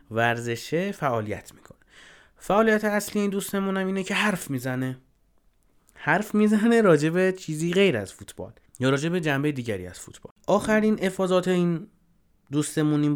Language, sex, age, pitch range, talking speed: Persian, male, 30-49, 110-165 Hz, 130 wpm